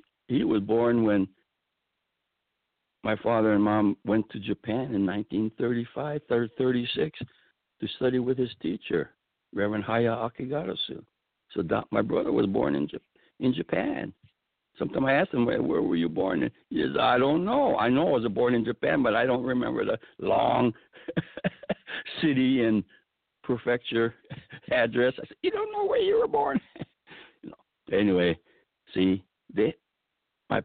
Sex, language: male, English